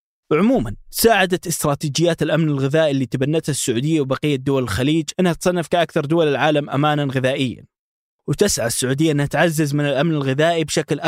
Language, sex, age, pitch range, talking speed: Arabic, male, 20-39, 130-160 Hz, 140 wpm